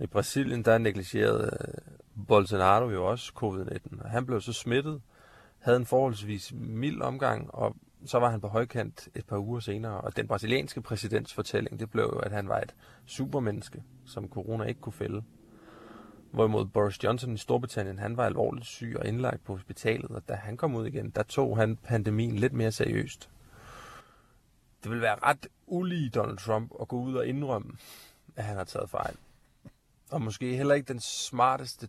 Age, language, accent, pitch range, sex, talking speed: 30-49, Danish, native, 105-125 Hz, male, 175 wpm